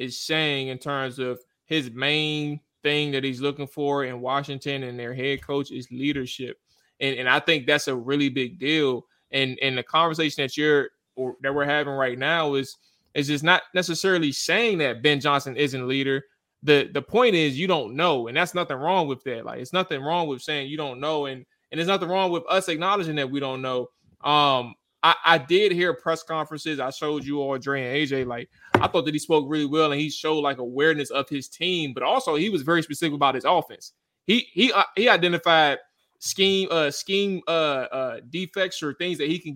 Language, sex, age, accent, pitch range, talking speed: English, male, 20-39, American, 135-165 Hz, 215 wpm